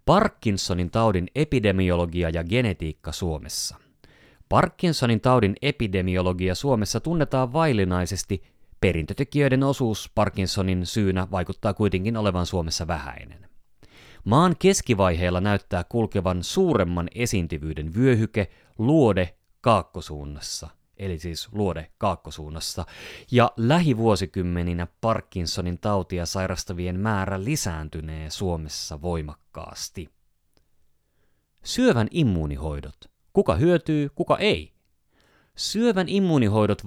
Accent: native